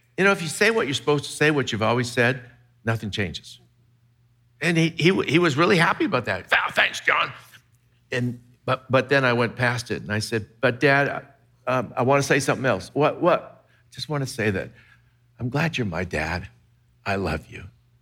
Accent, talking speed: American, 210 wpm